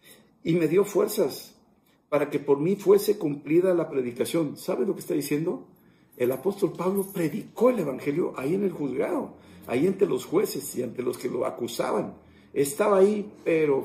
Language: Spanish